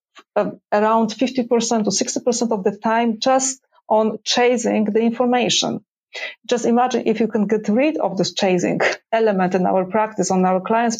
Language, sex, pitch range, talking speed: German, female, 195-225 Hz, 160 wpm